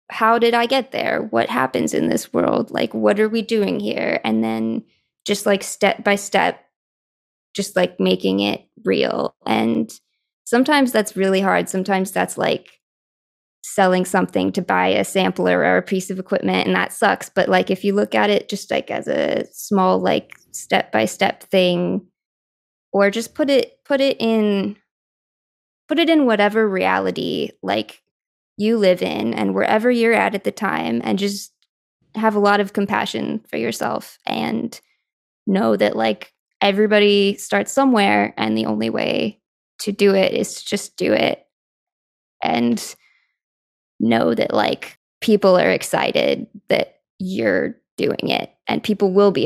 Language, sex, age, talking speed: English, female, 20-39, 160 wpm